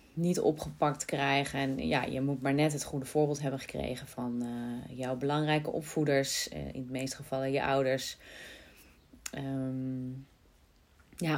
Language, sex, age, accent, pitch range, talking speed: Dutch, female, 30-49, Dutch, 135-160 Hz, 150 wpm